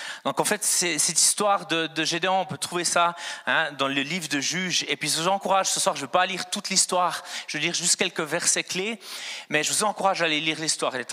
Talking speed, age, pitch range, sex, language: 270 wpm, 40-59, 150-200 Hz, male, French